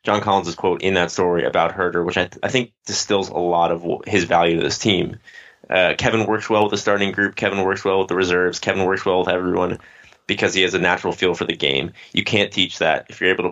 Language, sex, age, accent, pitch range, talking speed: English, male, 20-39, American, 85-100 Hz, 260 wpm